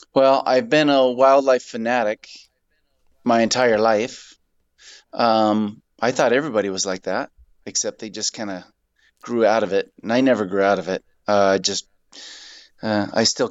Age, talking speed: 30-49, 170 wpm